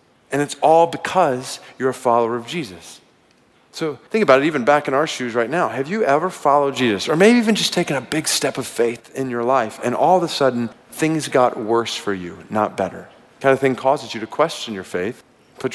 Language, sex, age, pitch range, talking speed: English, male, 40-59, 110-145 Hz, 235 wpm